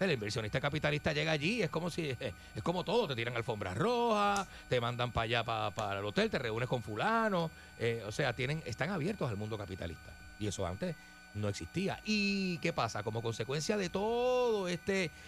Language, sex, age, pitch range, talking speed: Spanish, male, 30-49, 95-135 Hz, 195 wpm